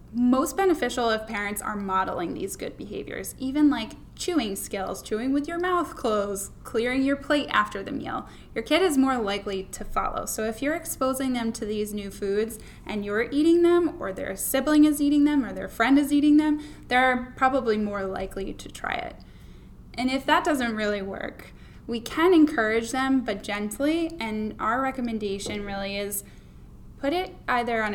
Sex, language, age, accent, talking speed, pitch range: female, English, 10-29, American, 180 wpm, 210-275 Hz